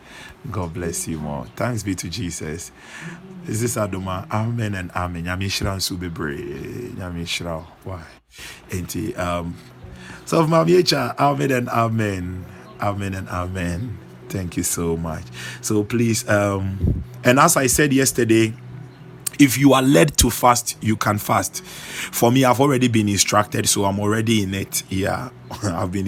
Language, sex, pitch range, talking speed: English, male, 95-130 Hz, 150 wpm